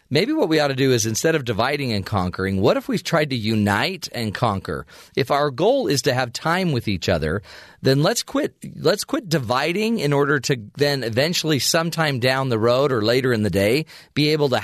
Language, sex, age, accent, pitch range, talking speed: English, male, 40-59, American, 115-155 Hz, 215 wpm